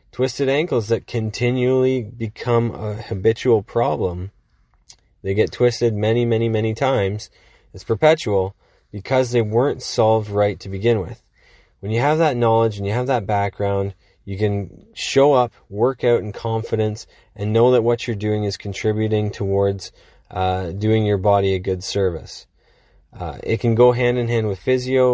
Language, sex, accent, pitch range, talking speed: English, male, American, 105-120 Hz, 160 wpm